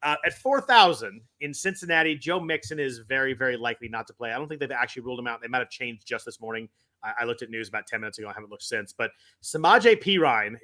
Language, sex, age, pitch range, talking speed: English, male, 30-49, 125-170 Hz, 255 wpm